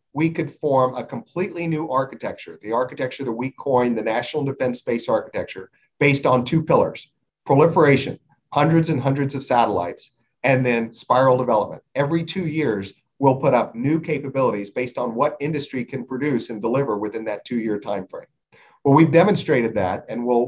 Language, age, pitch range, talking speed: English, 50-69, 120-140 Hz, 165 wpm